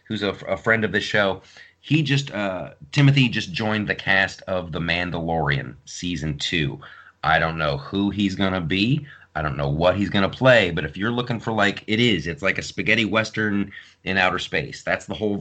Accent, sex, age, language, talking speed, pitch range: American, male, 30-49, English, 220 wpm, 95-125 Hz